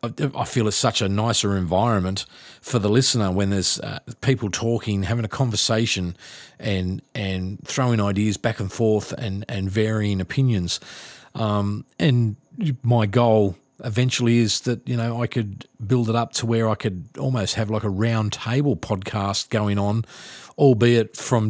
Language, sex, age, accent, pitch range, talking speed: English, male, 40-59, Australian, 100-125 Hz, 160 wpm